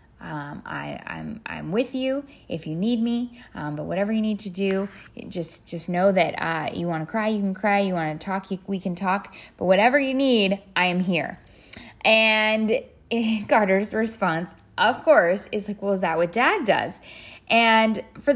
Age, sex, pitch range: 10-29, female, 185-220 Hz